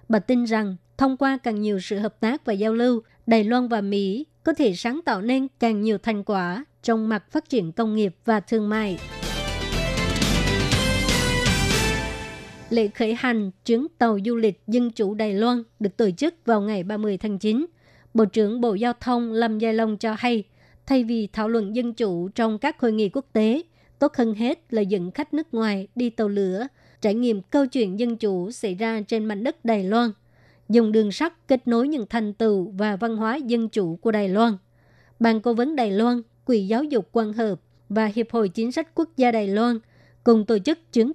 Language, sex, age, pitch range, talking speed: Vietnamese, male, 20-39, 210-240 Hz, 205 wpm